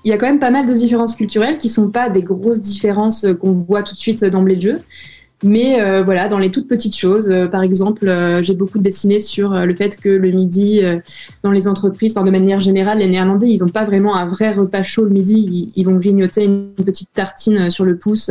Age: 20-39